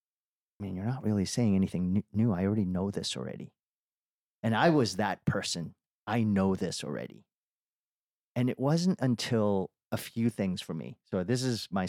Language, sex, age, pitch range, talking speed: English, male, 40-59, 95-120 Hz, 175 wpm